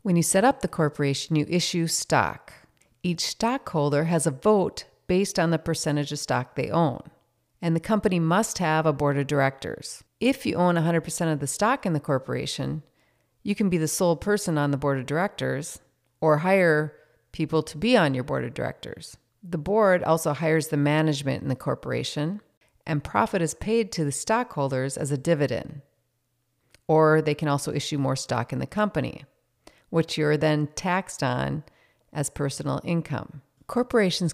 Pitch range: 140-175 Hz